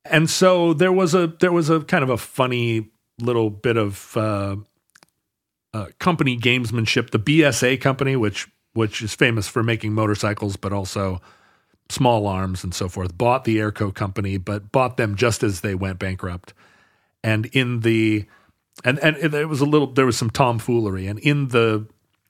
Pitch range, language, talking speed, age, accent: 100-130 Hz, English, 170 wpm, 40-59, American